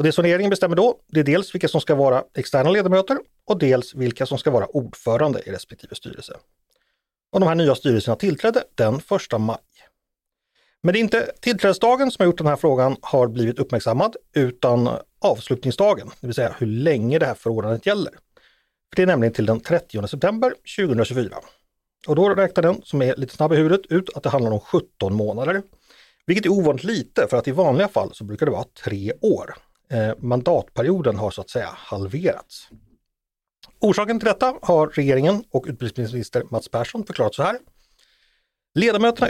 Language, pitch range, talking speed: Swedish, 130-195 Hz, 180 wpm